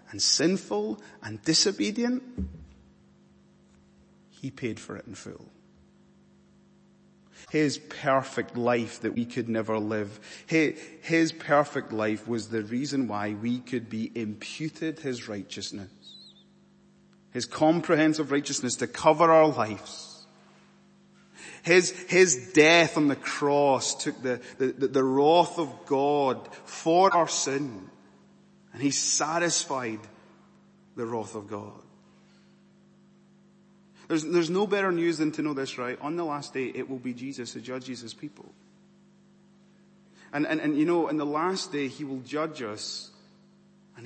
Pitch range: 120-180 Hz